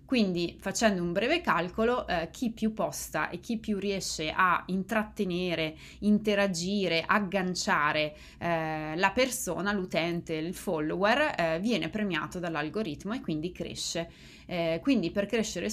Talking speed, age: 130 wpm, 20-39